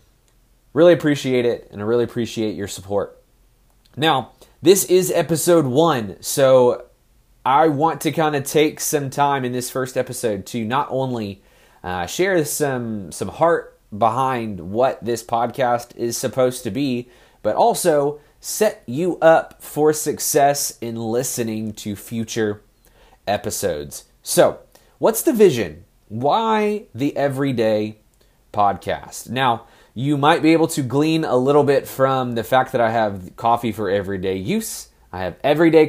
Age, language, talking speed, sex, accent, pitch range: 30-49, English, 145 wpm, male, American, 110-150 Hz